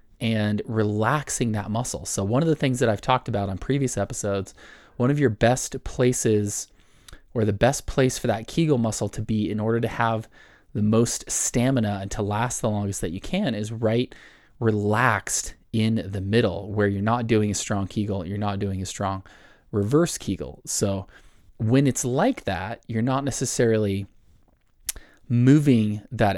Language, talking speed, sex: English, 175 wpm, male